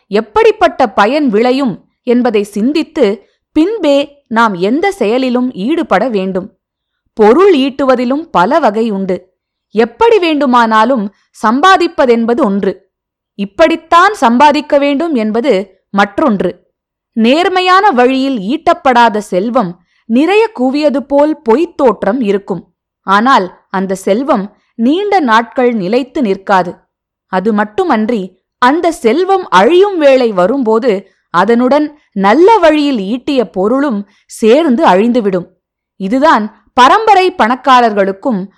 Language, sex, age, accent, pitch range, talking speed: Tamil, female, 20-39, native, 210-295 Hz, 90 wpm